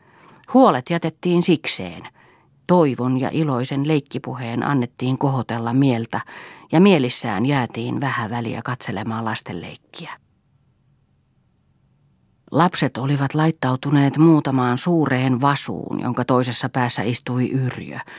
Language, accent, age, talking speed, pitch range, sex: Finnish, native, 40-59, 90 wpm, 125-155 Hz, female